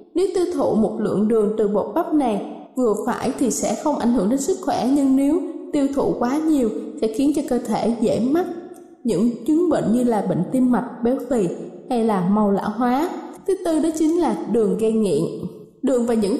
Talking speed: 210 wpm